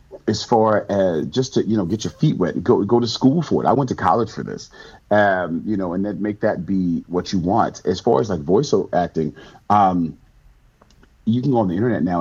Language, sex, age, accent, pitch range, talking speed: English, male, 40-59, American, 95-125 Hz, 240 wpm